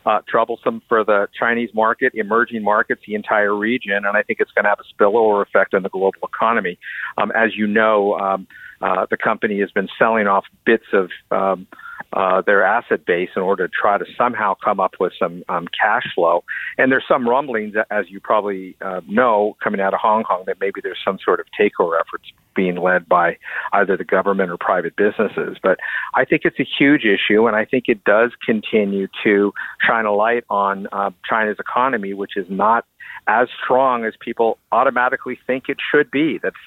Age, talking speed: 50-69, 200 wpm